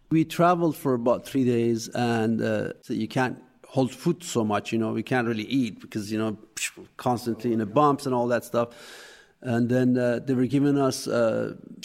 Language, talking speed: English, 200 wpm